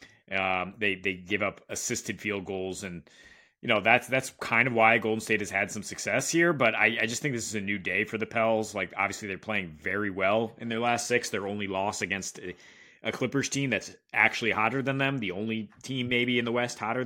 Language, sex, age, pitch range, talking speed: English, male, 30-49, 100-115 Hz, 230 wpm